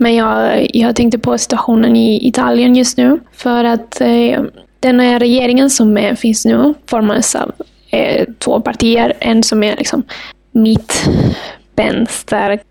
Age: 20-39